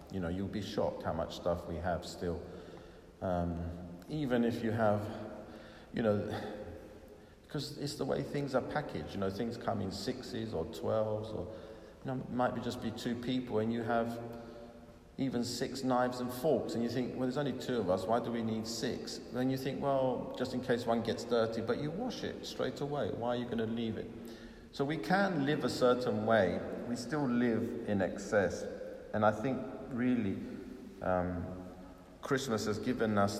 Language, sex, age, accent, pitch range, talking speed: English, male, 50-69, British, 100-120 Hz, 200 wpm